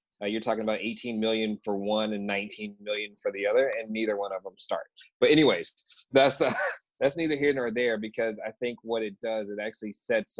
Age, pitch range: 20-39, 100-115 Hz